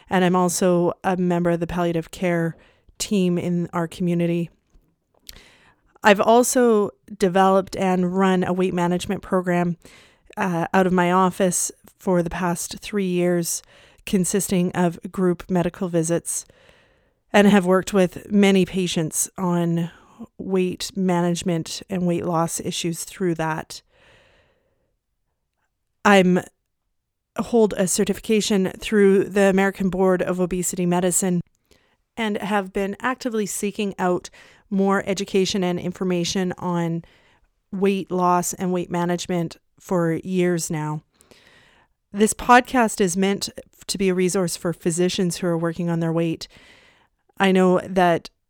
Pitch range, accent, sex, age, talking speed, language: 175-195 Hz, American, female, 30-49, 125 wpm, English